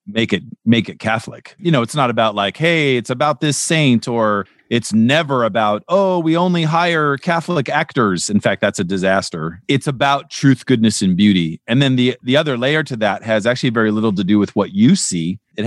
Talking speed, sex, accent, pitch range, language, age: 215 wpm, male, American, 105-130 Hz, English, 40-59